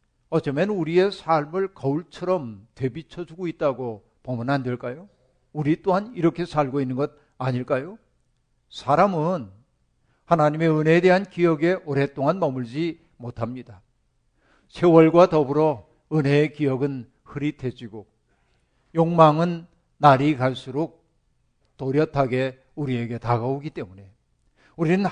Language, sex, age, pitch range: Korean, male, 50-69, 130-170 Hz